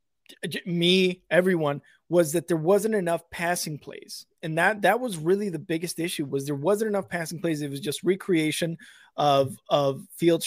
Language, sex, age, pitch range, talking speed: English, male, 20-39, 150-200 Hz, 170 wpm